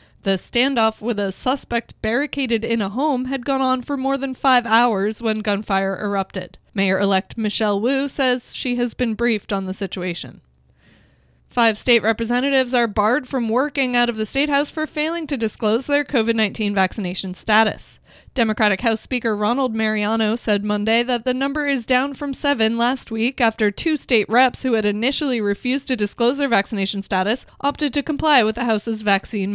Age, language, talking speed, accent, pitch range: 20-39, English, 175 wpm, American, 210-260 Hz